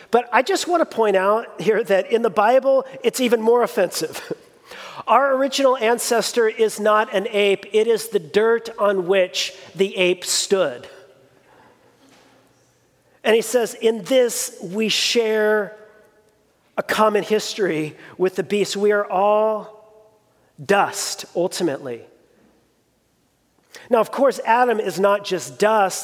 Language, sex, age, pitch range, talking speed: English, male, 40-59, 190-225 Hz, 130 wpm